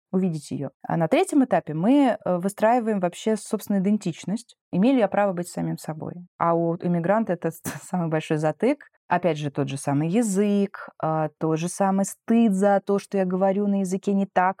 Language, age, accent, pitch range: Russian, 20-39, native, 170-215 Hz